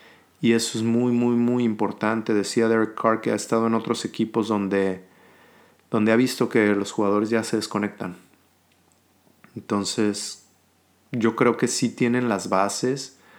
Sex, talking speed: male, 150 wpm